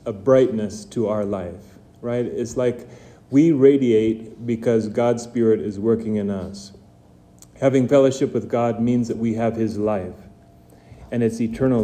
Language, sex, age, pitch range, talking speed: English, male, 30-49, 105-125 Hz, 150 wpm